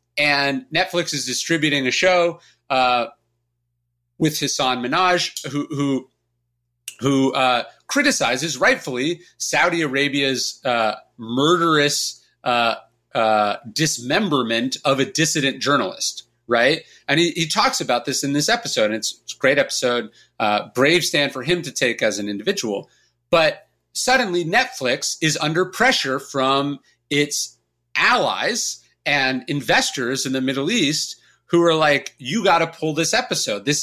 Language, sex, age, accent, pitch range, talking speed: English, male, 30-49, American, 125-175 Hz, 135 wpm